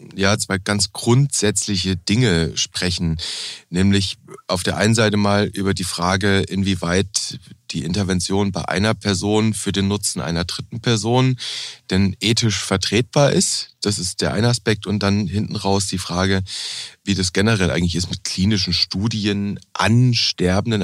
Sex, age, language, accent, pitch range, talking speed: male, 30-49, German, German, 90-115 Hz, 150 wpm